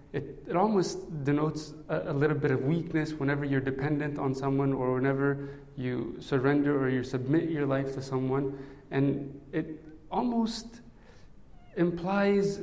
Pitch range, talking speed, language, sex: 150-190 Hz, 140 wpm, English, male